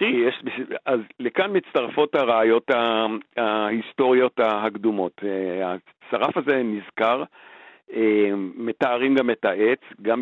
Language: Hebrew